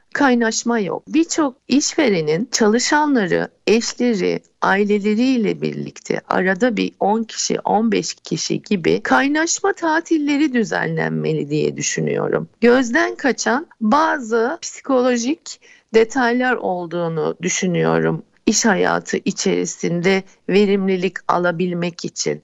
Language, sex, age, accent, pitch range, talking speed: Turkish, female, 60-79, native, 205-275 Hz, 90 wpm